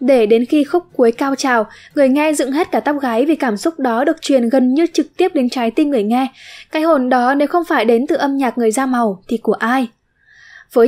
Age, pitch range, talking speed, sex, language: 10-29, 235-285 Hz, 255 wpm, female, Vietnamese